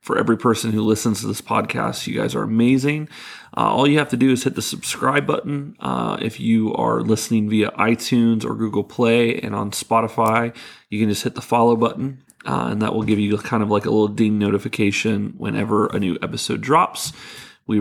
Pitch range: 105-120 Hz